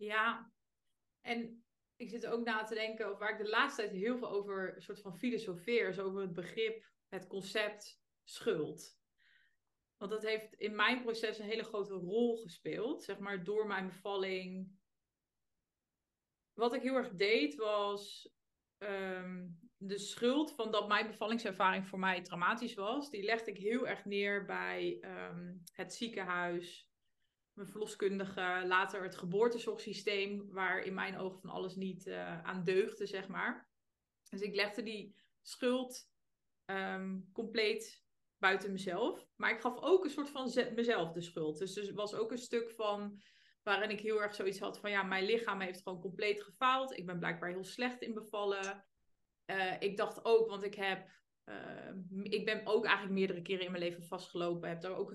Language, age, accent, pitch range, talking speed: Dutch, 20-39, Dutch, 190-220 Hz, 165 wpm